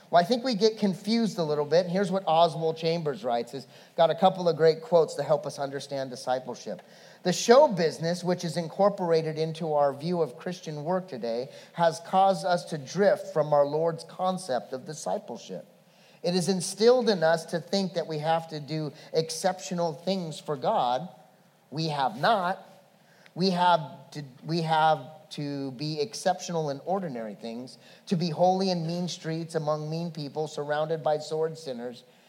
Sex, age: male, 40-59